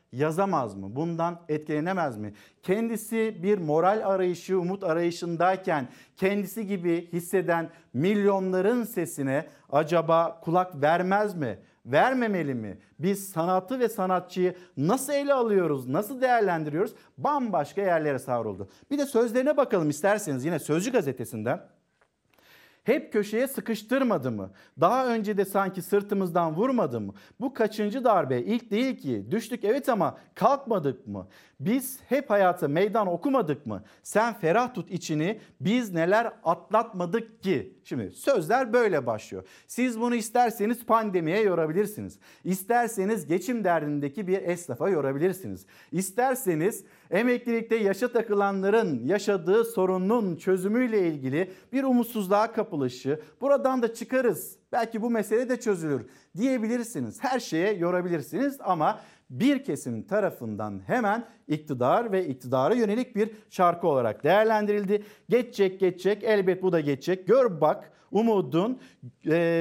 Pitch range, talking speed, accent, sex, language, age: 165-225 Hz, 120 wpm, native, male, Turkish, 50-69